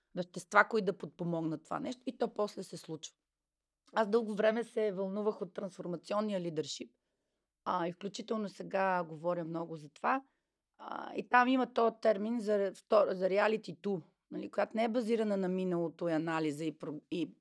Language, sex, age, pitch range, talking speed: Bulgarian, female, 30-49, 170-230 Hz, 150 wpm